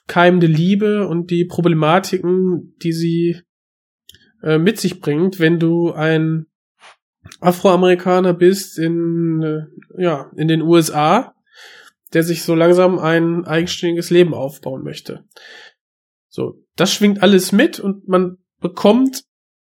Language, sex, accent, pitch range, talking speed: German, male, German, 160-190 Hz, 120 wpm